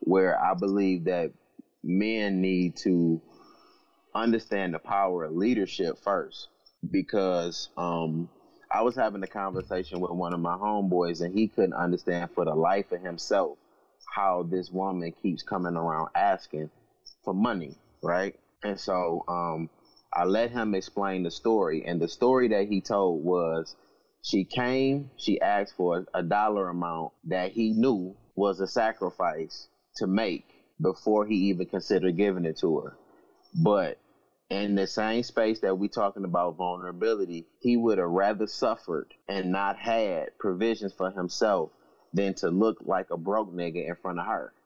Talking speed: 155 wpm